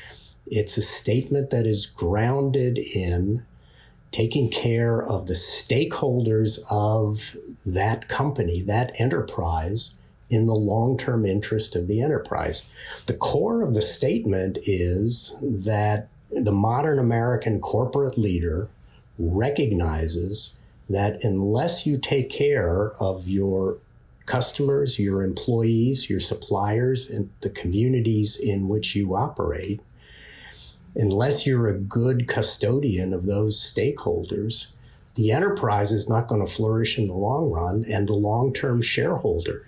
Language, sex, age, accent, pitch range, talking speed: English, male, 50-69, American, 100-115 Hz, 120 wpm